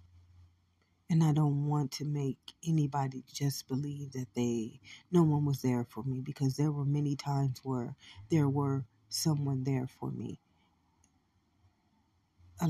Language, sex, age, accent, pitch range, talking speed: English, female, 40-59, American, 115-150 Hz, 140 wpm